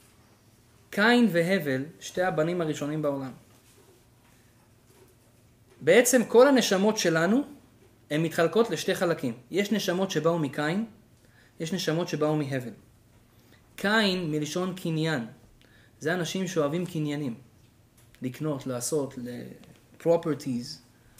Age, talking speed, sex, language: 20-39, 95 wpm, male, Hebrew